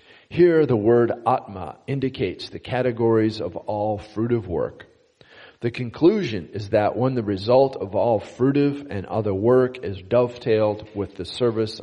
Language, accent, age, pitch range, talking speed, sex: English, American, 40-59, 100-125 Hz, 145 wpm, male